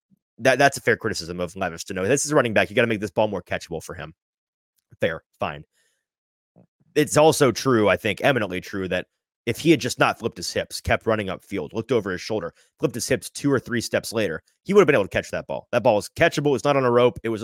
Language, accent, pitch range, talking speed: English, American, 110-150 Hz, 260 wpm